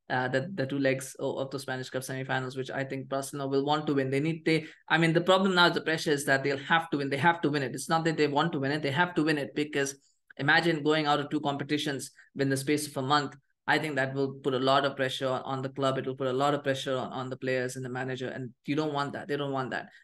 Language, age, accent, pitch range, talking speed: English, 20-39, Indian, 135-160 Hz, 305 wpm